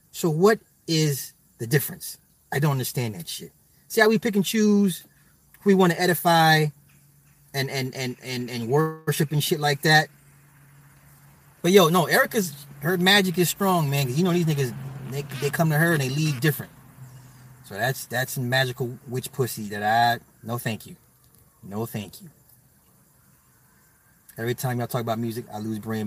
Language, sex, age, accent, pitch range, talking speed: English, male, 30-49, American, 125-160 Hz, 175 wpm